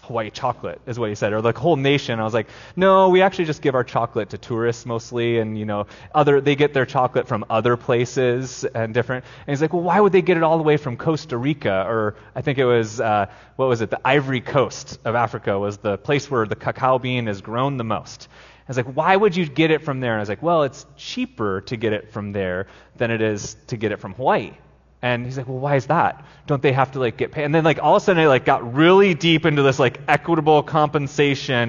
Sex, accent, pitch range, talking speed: male, American, 115-150 Hz, 260 wpm